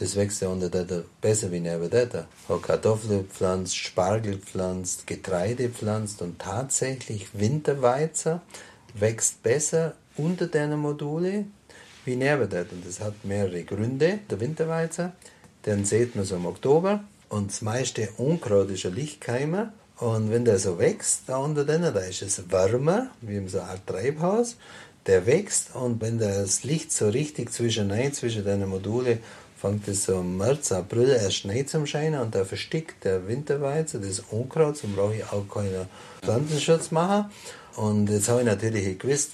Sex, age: male, 50-69